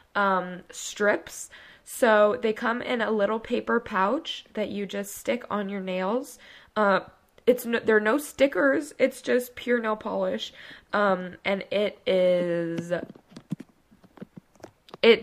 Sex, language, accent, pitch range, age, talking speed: female, English, American, 185-230 Hz, 10-29, 130 wpm